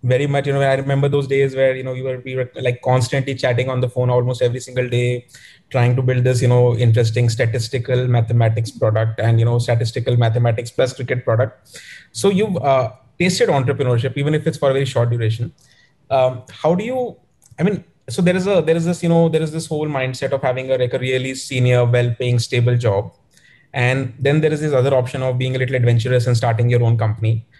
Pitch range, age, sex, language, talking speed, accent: 120-140 Hz, 20-39, male, English, 215 wpm, Indian